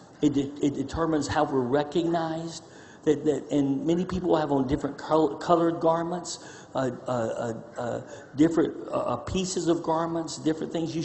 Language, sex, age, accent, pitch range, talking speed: English, male, 50-69, American, 130-160 Hz, 155 wpm